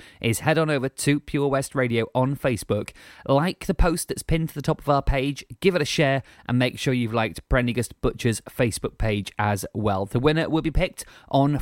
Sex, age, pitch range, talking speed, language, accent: male, 30-49, 125-165 Hz, 215 wpm, English, British